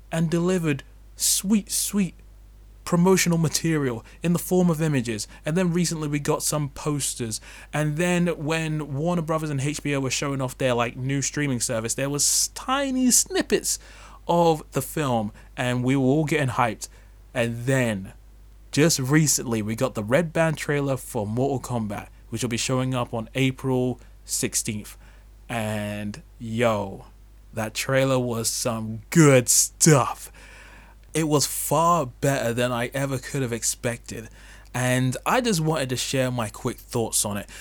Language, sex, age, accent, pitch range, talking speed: English, male, 20-39, British, 110-150 Hz, 155 wpm